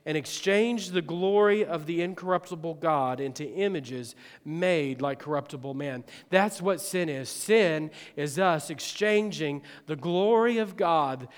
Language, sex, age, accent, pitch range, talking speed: English, male, 40-59, American, 150-190 Hz, 135 wpm